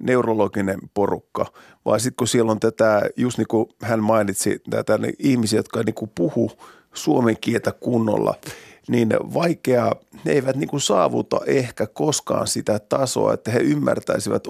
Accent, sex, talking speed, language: native, male, 140 wpm, Finnish